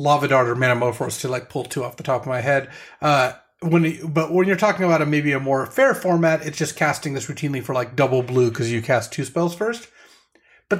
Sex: male